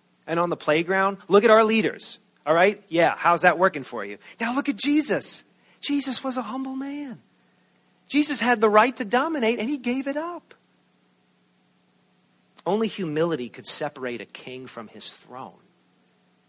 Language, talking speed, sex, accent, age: English, 165 wpm, male, American, 40-59